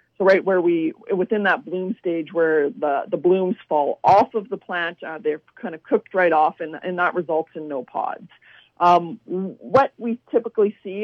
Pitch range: 170-205 Hz